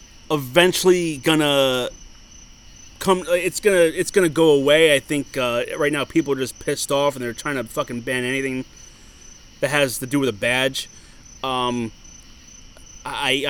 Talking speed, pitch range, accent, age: 155 wpm, 140-200 Hz, American, 30-49